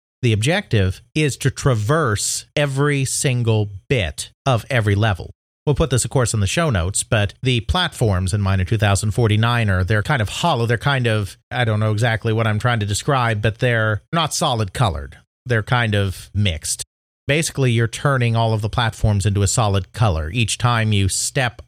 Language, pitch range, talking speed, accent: English, 100-130 Hz, 185 wpm, American